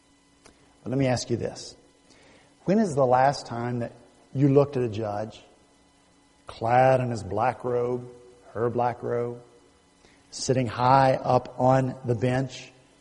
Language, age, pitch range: English, 50-69, 135-200 Hz